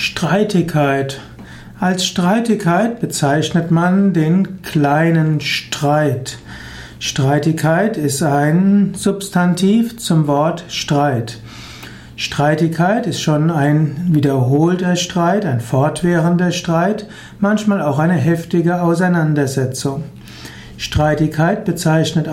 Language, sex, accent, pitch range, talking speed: German, male, German, 145-180 Hz, 85 wpm